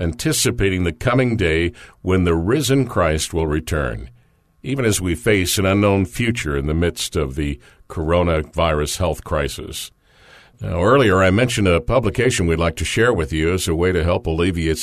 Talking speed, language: 175 wpm, English